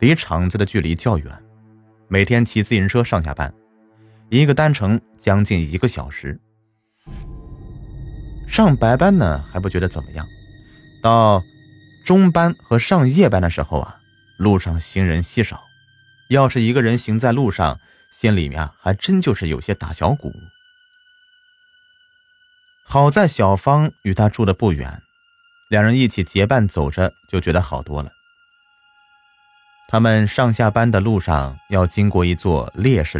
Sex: male